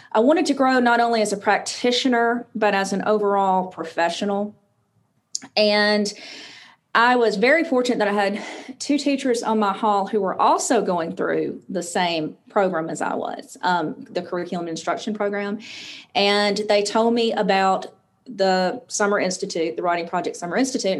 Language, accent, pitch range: English, American, 195-245 Hz